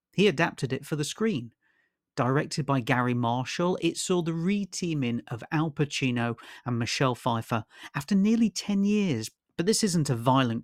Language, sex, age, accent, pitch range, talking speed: English, male, 40-59, British, 125-175 Hz, 165 wpm